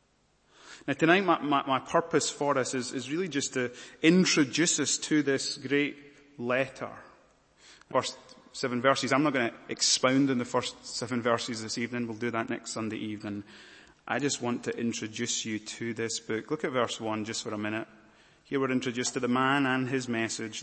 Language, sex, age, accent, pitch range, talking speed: English, male, 30-49, British, 115-130 Hz, 190 wpm